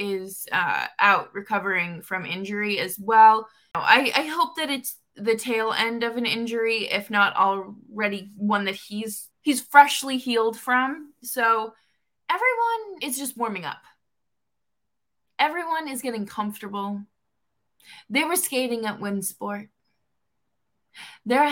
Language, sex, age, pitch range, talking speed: English, female, 20-39, 205-280 Hz, 125 wpm